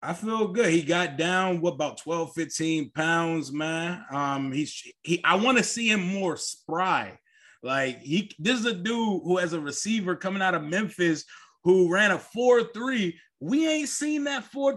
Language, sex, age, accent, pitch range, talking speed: English, male, 20-39, American, 170-220 Hz, 185 wpm